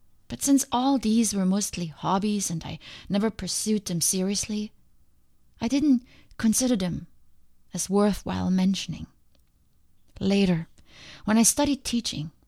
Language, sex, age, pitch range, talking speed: English, female, 30-49, 170-220 Hz, 120 wpm